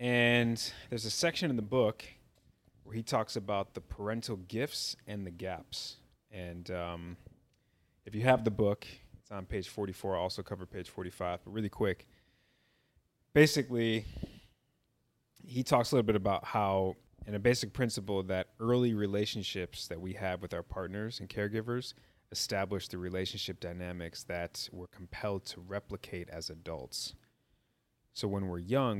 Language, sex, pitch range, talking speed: English, male, 90-115 Hz, 155 wpm